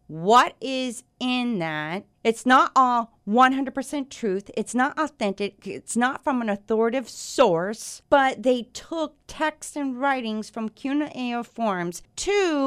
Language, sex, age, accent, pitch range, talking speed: English, female, 40-59, American, 195-255 Hz, 135 wpm